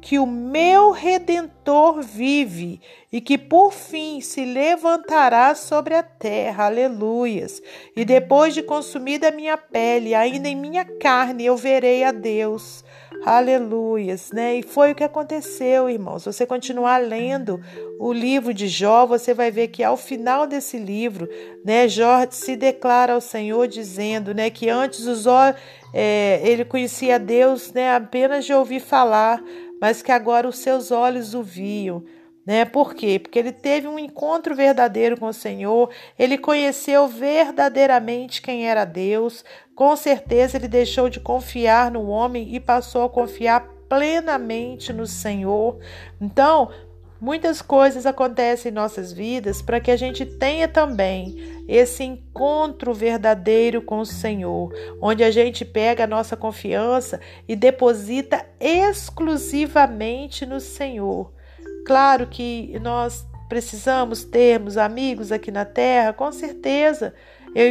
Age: 50-69